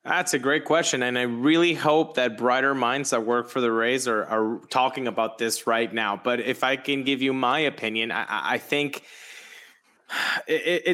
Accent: American